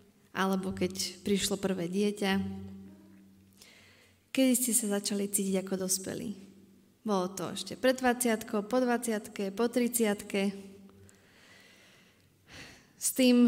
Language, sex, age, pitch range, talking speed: Slovak, female, 20-39, 185-220 Hz, 100 wpm